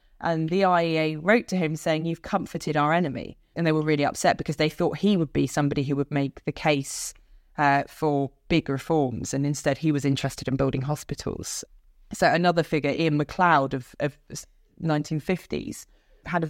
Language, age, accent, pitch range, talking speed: English, 20-39, British, 145-180 Hz, 180 wpm